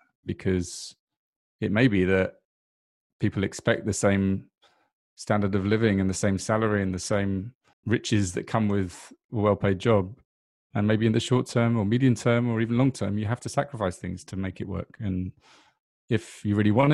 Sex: male